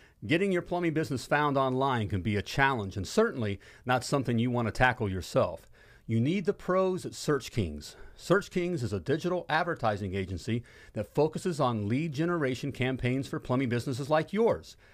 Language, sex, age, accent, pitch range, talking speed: English, male, 40-59, American, 115-160 Hz, 175 wpm